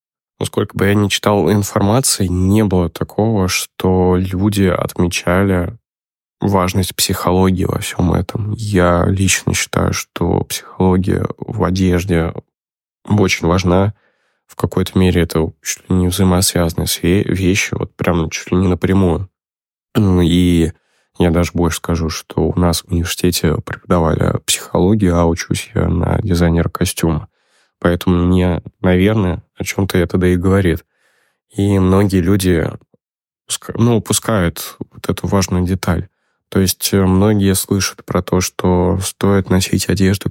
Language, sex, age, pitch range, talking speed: English, male, 20-39, 90-100 Hz, 135 wpm